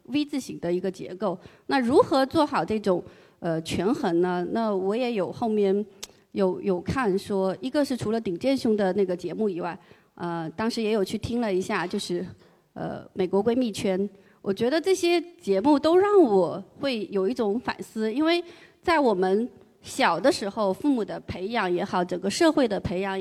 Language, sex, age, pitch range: Chinese, female, 30-49, 195-270 Hz